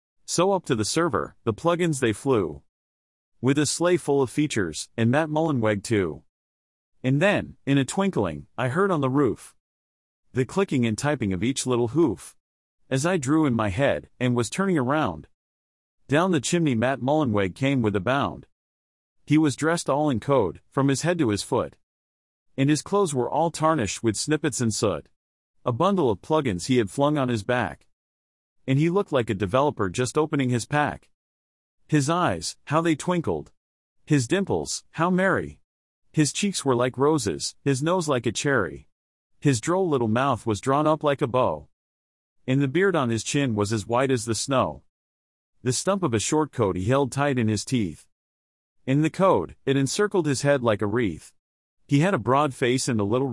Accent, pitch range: American, 100-150 Hz